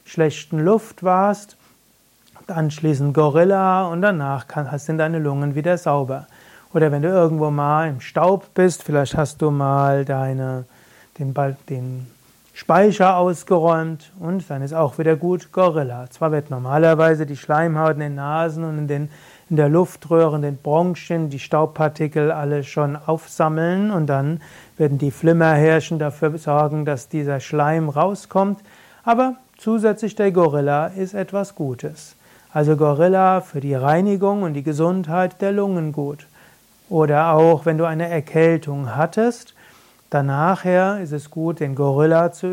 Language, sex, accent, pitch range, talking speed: German, male, German, 150-180 Hz, 145 wpm